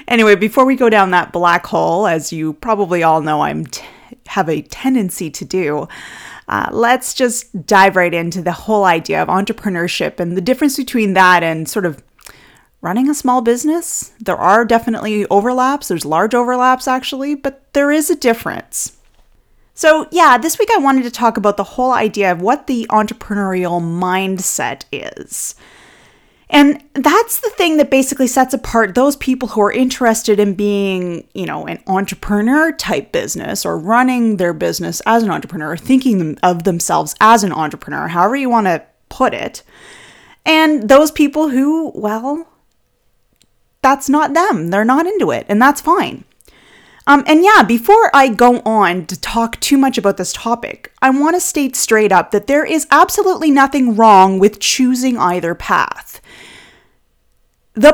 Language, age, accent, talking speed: English, 20-39, American, 165 wpm